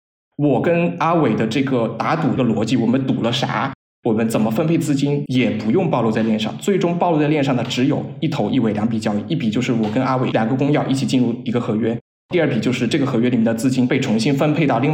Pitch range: 120-145 Hz